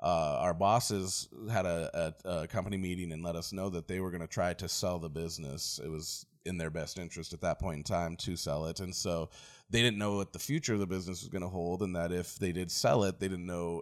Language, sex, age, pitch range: English, male, 30-49, 85-105 Hz